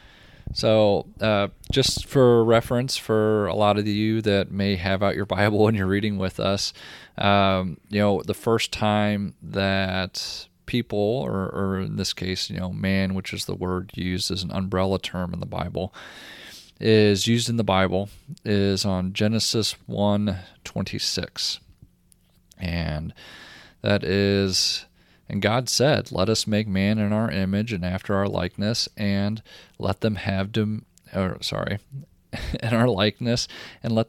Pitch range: 95-110 Hz